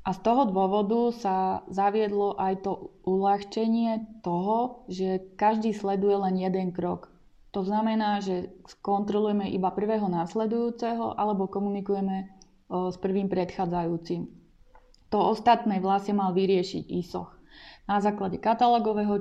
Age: 20-39